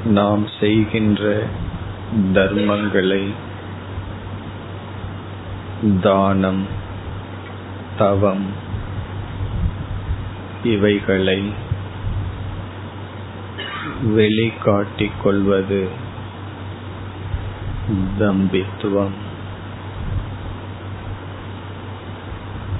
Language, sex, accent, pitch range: Tamil, male, native, 95-105 Hz